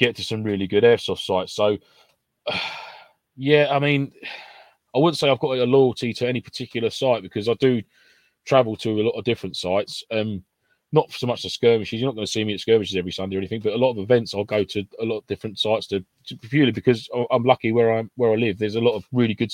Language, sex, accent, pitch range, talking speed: English, male, British, 95-120 Hz, 245 wpm